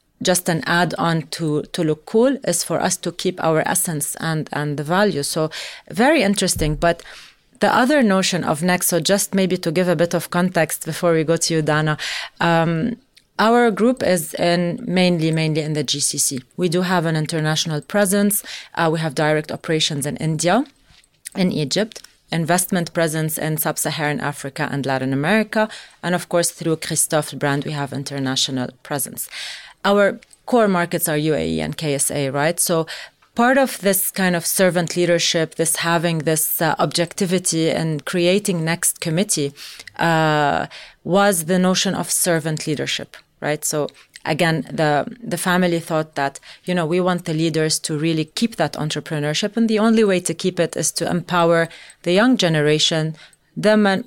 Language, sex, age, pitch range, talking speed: English, female, 30-49, 155-185 Hz, 170 wpm